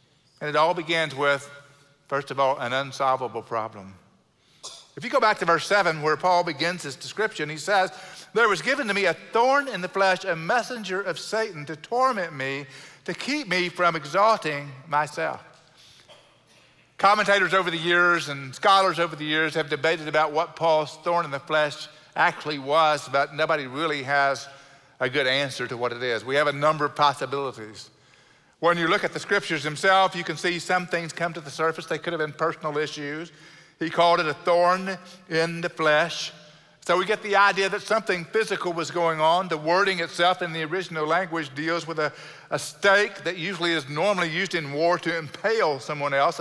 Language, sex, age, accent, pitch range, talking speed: English, male, 50-69, American, 145-180 Hz, 195 wpm